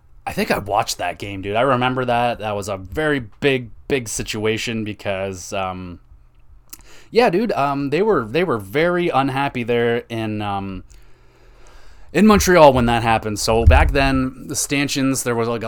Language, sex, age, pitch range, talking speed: English, male, 20-39, 100-125 Hz, 170 wpm